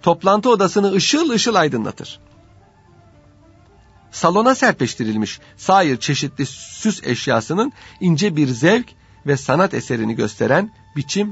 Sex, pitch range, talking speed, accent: male, 120-195 Hz, 100 wpm, native